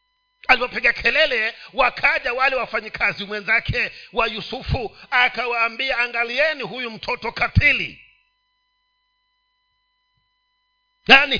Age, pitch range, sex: 50-69, 215-350 Hz, male